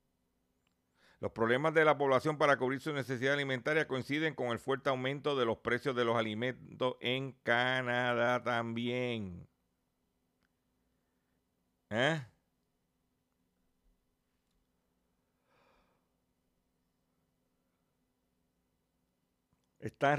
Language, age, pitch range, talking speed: Spanish, 50-69, 85-135 Hz, 75 wpm